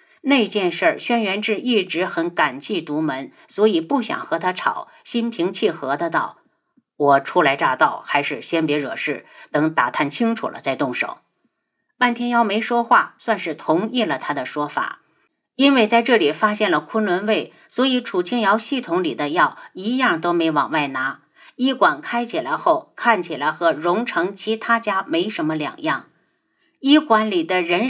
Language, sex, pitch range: Chinese, female, 180-305 Hz